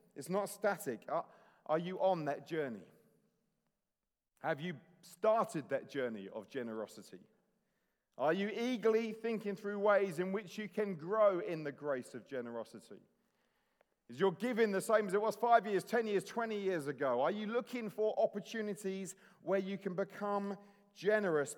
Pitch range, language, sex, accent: 135-195 Hz, English, male, British